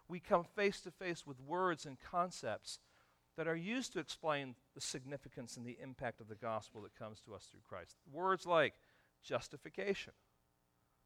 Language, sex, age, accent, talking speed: English, male, 40-59, American, 155 wpm